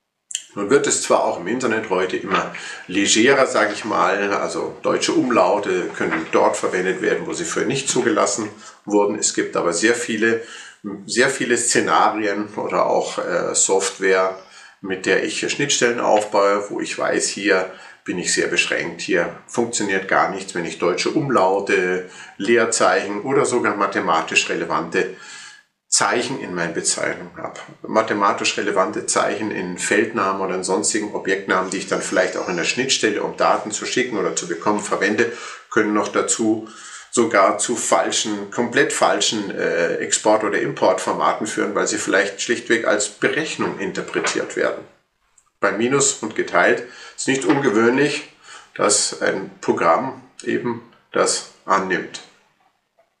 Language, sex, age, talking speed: German, male, 50-69, 145 wpm